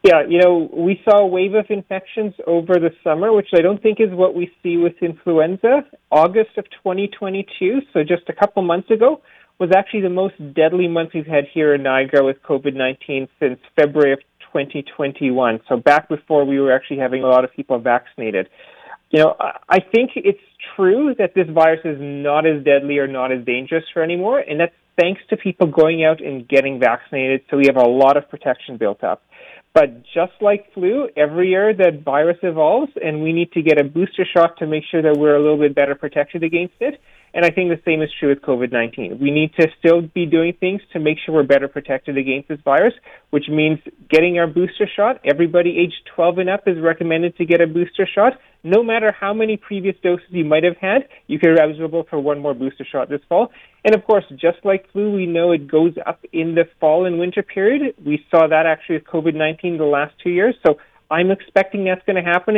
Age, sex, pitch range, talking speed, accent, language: 40-59, male, 150-190 Hz, 220 wpm, American, English